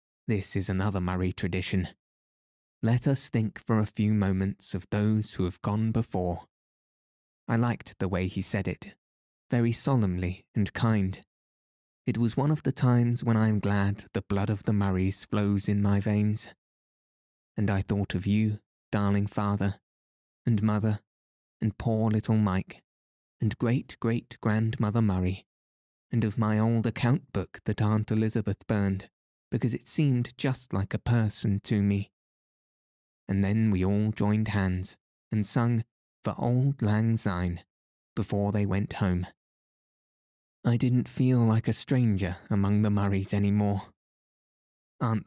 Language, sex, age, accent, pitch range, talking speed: English, male, 20-39, British, 95-115 Hz, 145 wpm